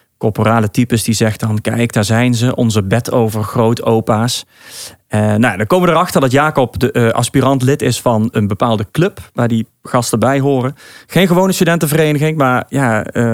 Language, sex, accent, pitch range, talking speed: Dutch, male, Dutch, 115-135 Hz, 190 wpm